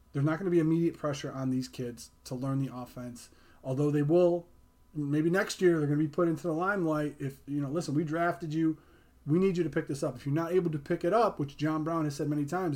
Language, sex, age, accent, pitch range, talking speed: English, male, 30-49, American, 135-170 Hz, 270 wpm